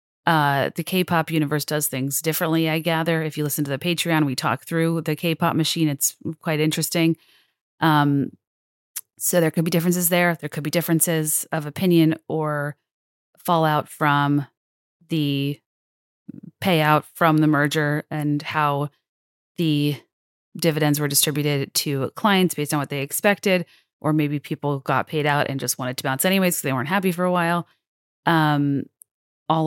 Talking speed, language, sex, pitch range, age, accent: 160 wpm, English, female, 140-165 Hz, 30-49, American